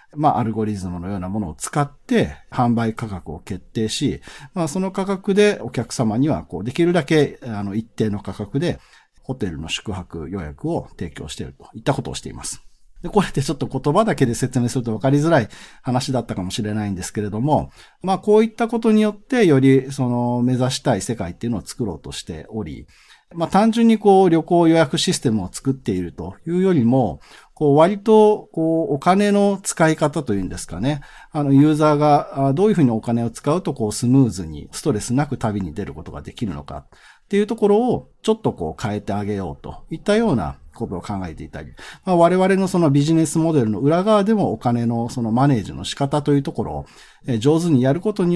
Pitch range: 110-170 Hz